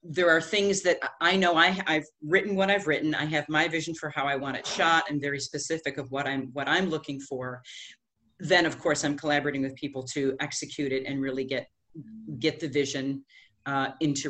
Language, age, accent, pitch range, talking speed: English, 40-59, American, 135-165 Hz, 205 wpm